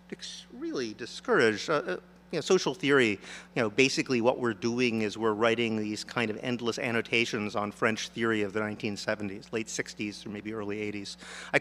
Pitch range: 110-170 Hz